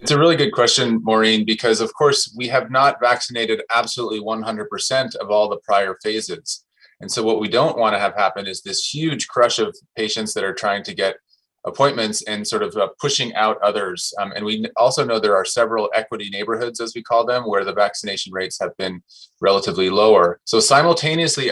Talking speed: 195 wpm